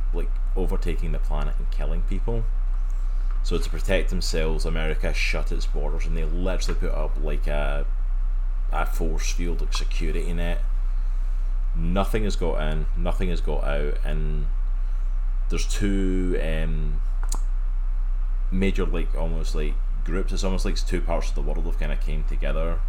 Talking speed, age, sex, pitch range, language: 150 wpm, 20-39, male, 75-100 Hz, English